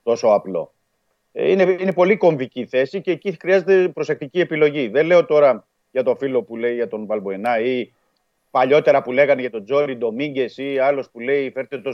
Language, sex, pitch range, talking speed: Greek, male, 115-150 Hz, 185 wpm